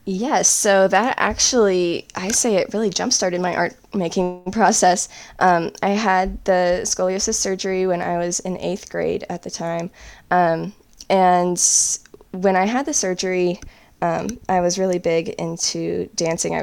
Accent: American